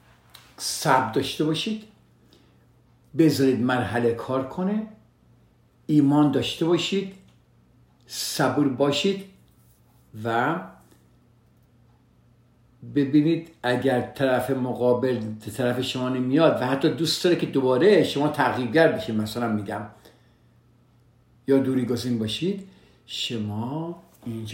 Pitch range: 115-145 Hz